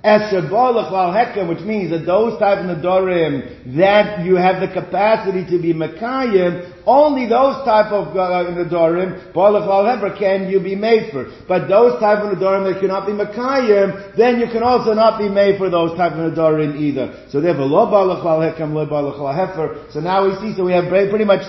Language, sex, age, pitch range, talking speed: English, male, 50-69, 155-195 Hz, 205 wpm